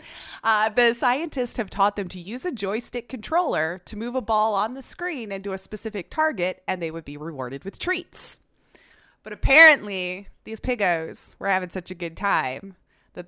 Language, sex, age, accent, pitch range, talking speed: English, female, 20-39, American, 165-230 Hz, 180 wpm